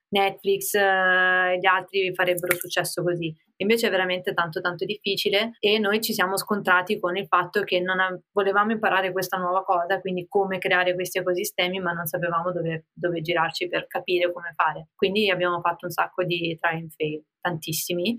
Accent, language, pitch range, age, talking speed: native, Italian, 180-200 Hz, 20-39, 175 wpm